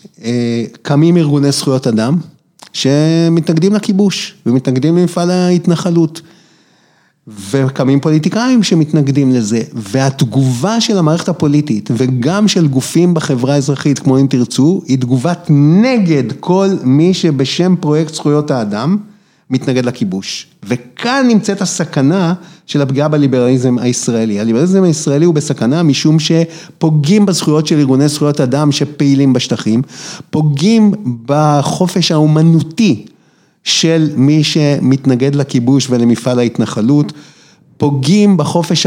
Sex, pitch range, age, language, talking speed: male, 130-170 Hz, 30-49, Hebrew, 105 wpm